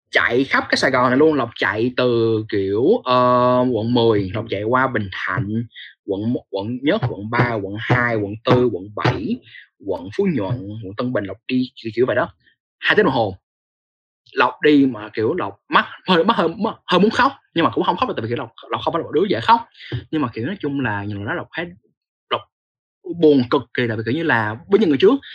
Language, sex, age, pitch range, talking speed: Vietnamese, male, 20-39, 110-150 Hz, 225 wpm